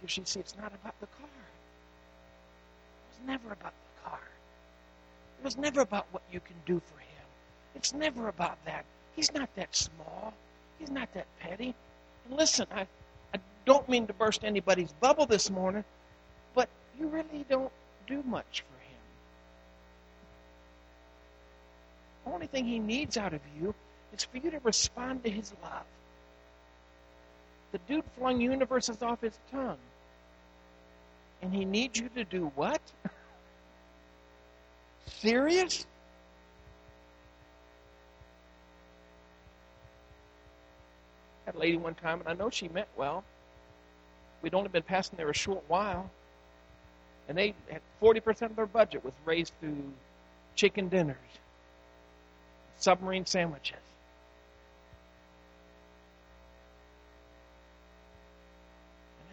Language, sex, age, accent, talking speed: English, male, 60-79, American, 120 wpm